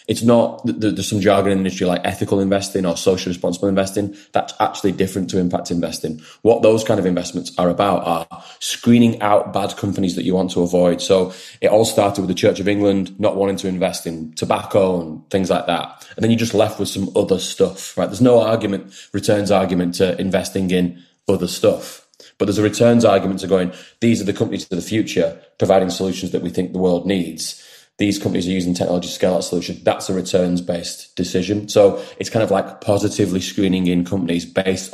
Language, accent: English, British